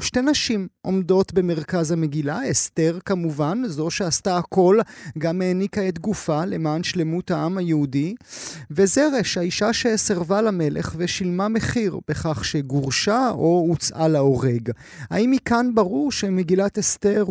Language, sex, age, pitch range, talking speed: Hebrew, male, 30-49, 155-200 Hz, 120 wpm